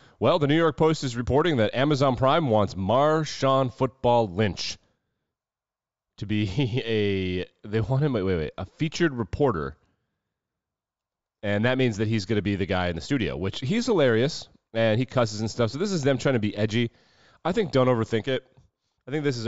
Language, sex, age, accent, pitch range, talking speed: English, male, 30-49, American, 90-125 Hz, 195 wpm